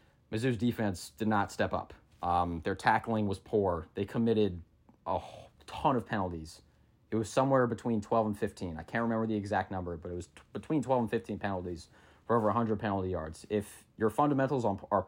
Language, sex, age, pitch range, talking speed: English, male, 20-39, 95-110 Hz, 185 wpm